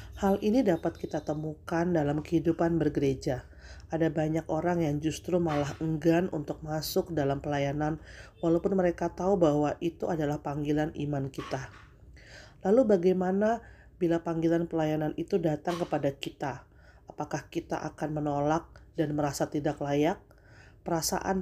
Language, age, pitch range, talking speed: Indonesian, 30-49, 145-170 Hz, 130 wpm